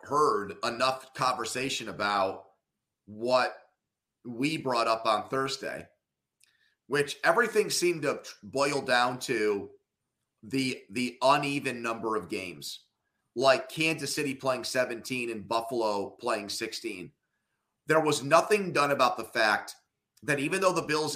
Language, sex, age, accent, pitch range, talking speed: English, male, 30-49, American, 115-150 Hz, 125 wpm